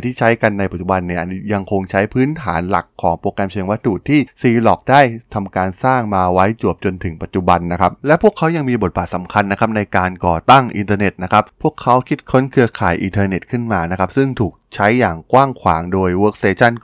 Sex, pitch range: male, 95-125 Hz